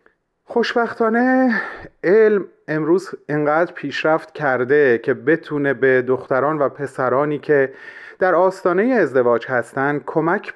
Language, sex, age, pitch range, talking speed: Persian, male, 30-49, 135-200 Hz, 100 wpm